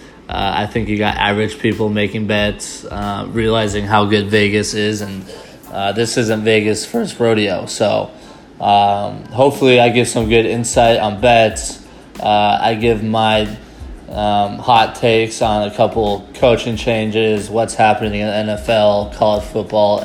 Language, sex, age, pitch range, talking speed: English, male, 20-39, 105-115 Hz, 160 wpm